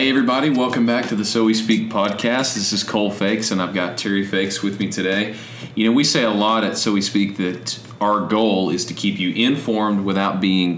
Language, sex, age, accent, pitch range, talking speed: English, male, 40-59, American, 90-110 Hz, 235 wpm